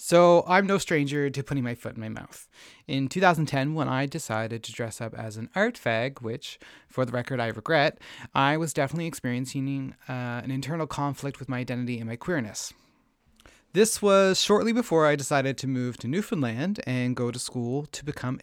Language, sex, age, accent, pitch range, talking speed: English, male, 30-49, American, 125-165 Hz, 190 wpm